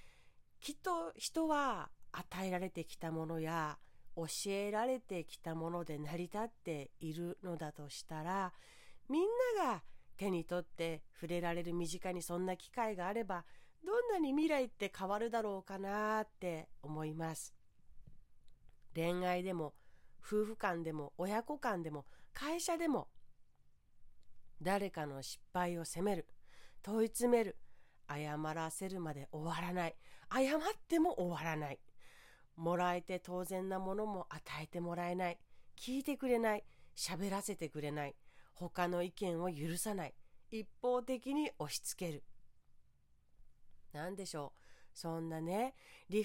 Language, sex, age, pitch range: Japanese, female, 40-59, 165-230 Hz